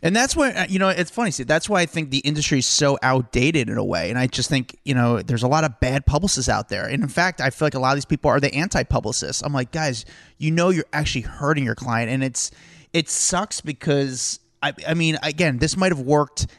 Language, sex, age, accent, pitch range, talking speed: English, male, 20-39, American, 130-165 Hz, 255 wpm